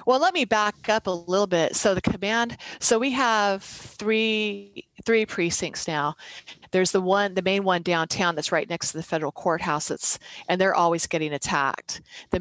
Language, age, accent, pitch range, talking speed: English, 30-49, American, 160-200 Hz, 190 wpm